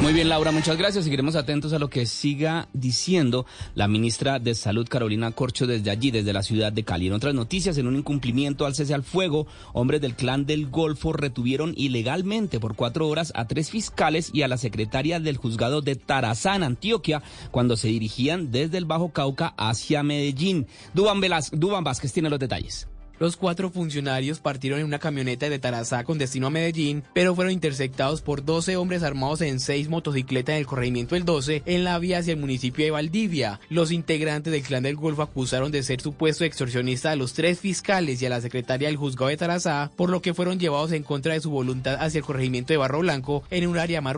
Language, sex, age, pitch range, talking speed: Spanish, male, 30-49, 130-170 Hz, 205 wpm